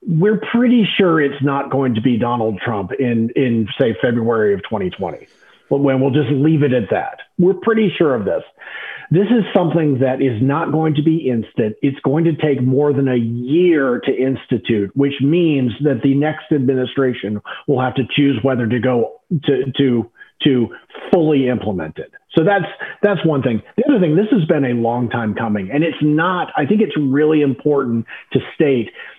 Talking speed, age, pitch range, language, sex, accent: 190 wpm, 40-59, 125-155 Hz, English, male, American